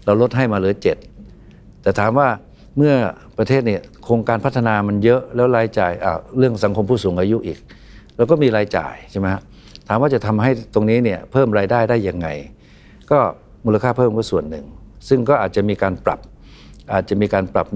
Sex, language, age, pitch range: male, Thai, 60-79, 95-125 Hz